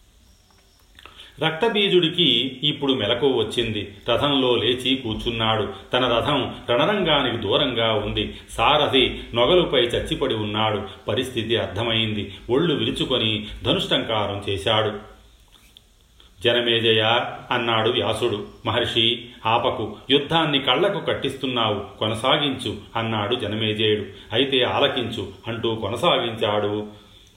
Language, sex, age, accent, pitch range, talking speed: Telugu, male, 40-59, native, 105-125 Hz, 80 wpm